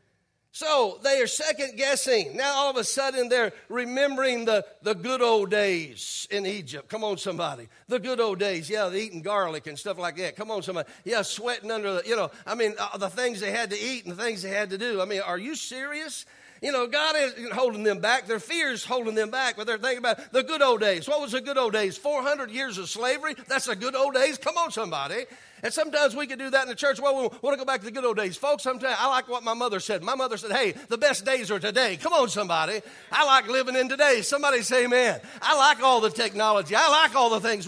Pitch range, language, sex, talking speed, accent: 210-280 Hz, English, male, 255 wpm, American